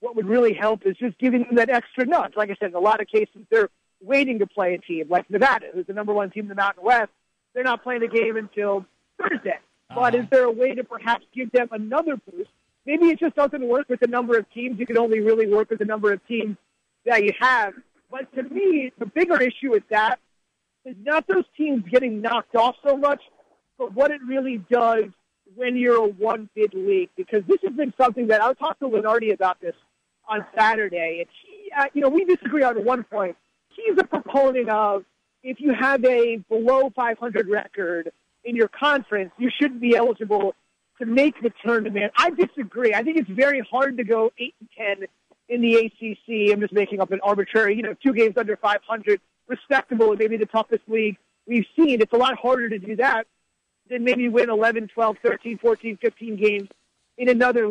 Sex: male